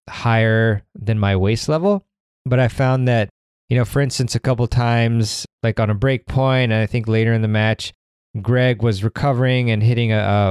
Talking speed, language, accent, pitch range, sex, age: 205 wpm, English, American, 100-125 Hz, male, 20-39